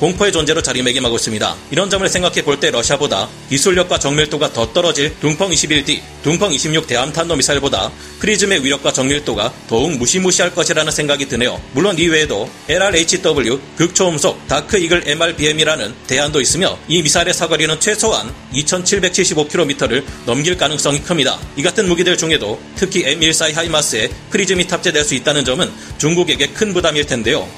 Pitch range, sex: 140-180 Hz, male